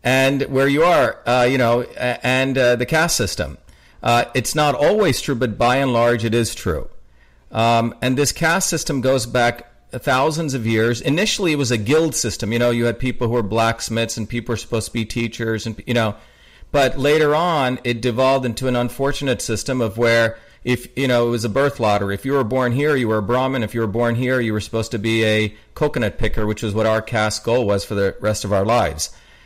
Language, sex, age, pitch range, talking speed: English, male, 40-59, 110-130 Hz, 230 wpm